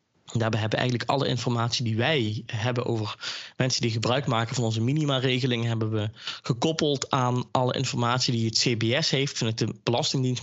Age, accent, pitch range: 20-39, Dutch, 110-130 Hz